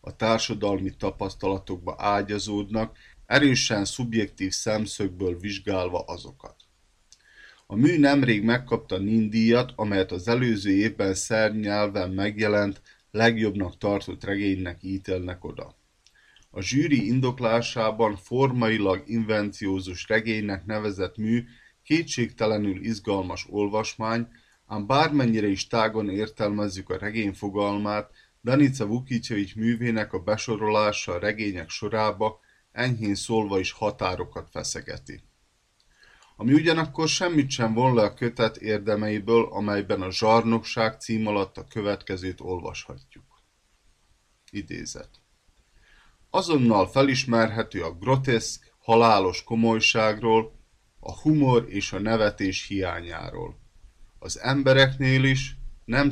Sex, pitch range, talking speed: male, 100-115 Hz, 95 wpm